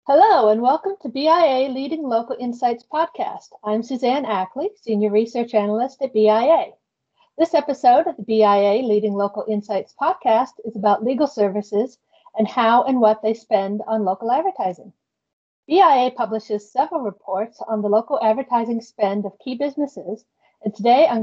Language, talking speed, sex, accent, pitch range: English, 155 wpm, female, American, 205-255 Hz